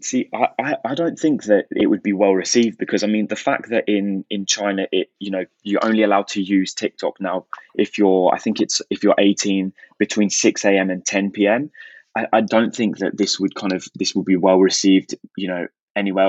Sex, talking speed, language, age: male, 225 wpm, English, 20-39